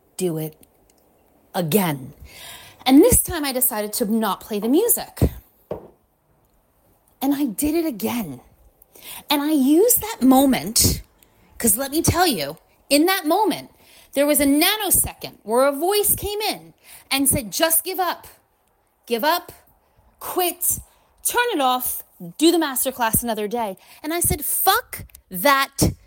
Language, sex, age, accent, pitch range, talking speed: English, female, 30-49, American, 235-340 Hz, 140 wpm